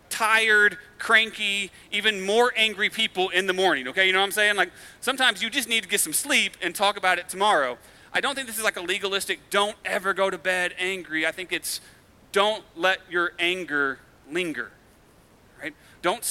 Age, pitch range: 40-59, 175-215 Hz